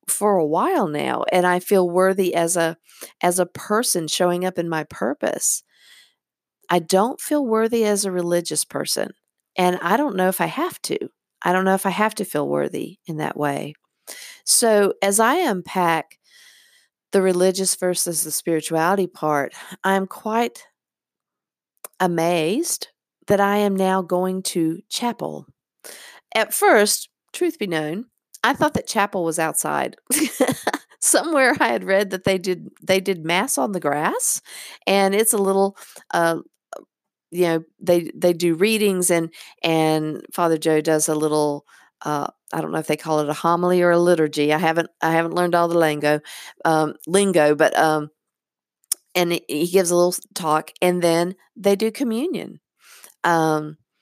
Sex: female